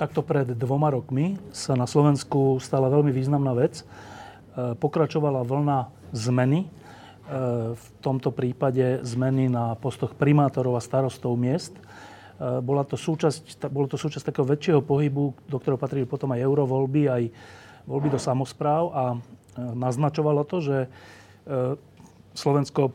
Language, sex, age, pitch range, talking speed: Slovak, male, 40-59, 125-145 Hz, 125 wpm